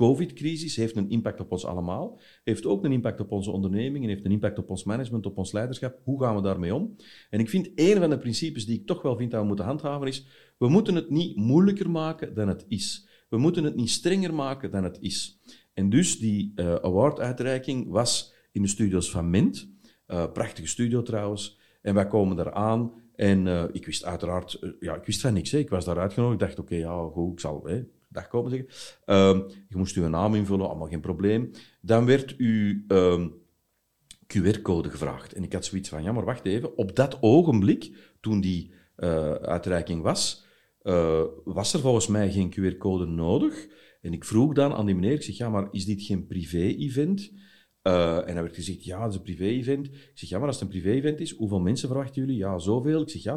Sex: male